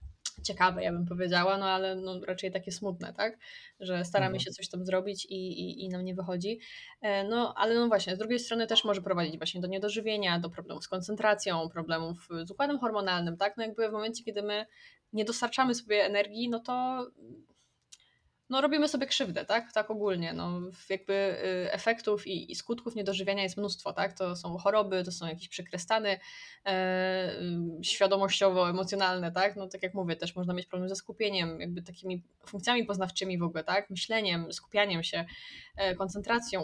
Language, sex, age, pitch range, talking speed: Polish, female, 10-29, 175-205 Hz, 165 wpm